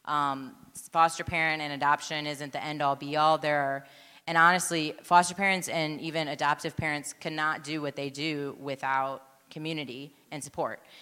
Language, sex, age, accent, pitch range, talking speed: English, female, 20-39, American, 145-160 Hz, 145 wpm